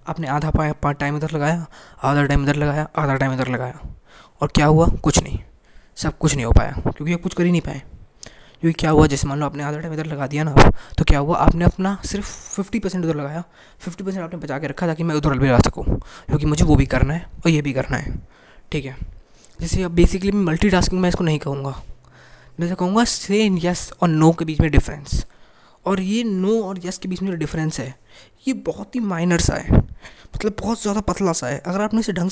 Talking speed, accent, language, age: 235 wpm, native, Hindi, 20-39